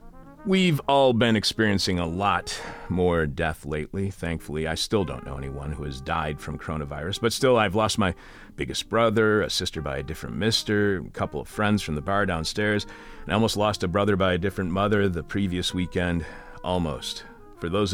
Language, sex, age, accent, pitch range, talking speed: English, male, 40-59, American, 85-110 Hz, 190 wpm